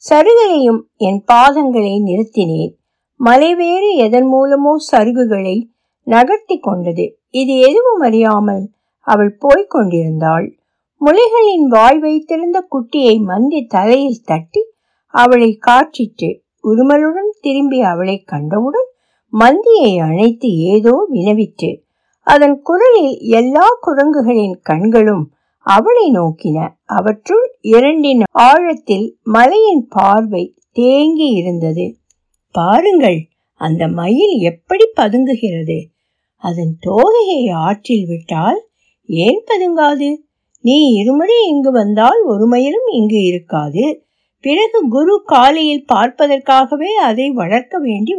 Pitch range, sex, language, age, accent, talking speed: 210-305 Hz, female, Tamil, 60-79, native, 80 wpm